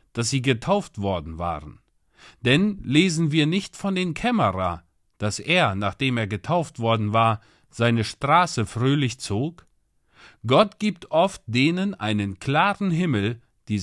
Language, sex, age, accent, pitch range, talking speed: German, male, 40-59, German, 110-165 Hz, 135 wpm